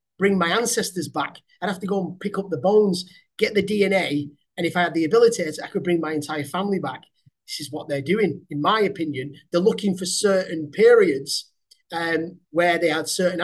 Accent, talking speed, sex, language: British, 210 wpm, male, English